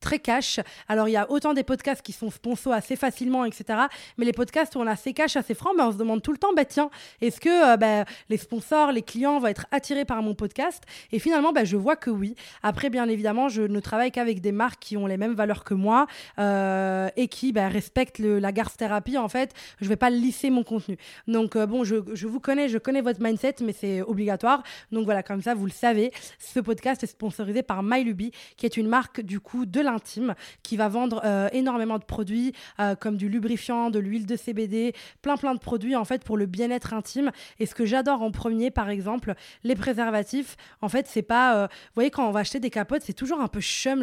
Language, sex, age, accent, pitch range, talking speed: French, female, 20-39, French, 215-260 Hz, 245 wpm